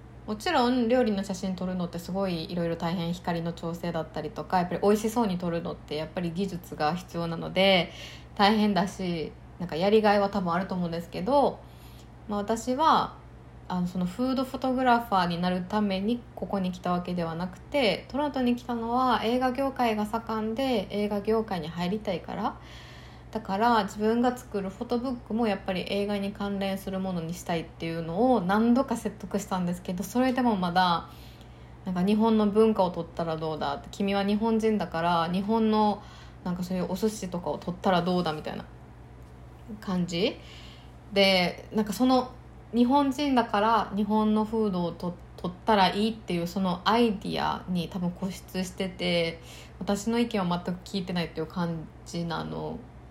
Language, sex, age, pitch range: Japanese, female, 20-39, 175-220 Hz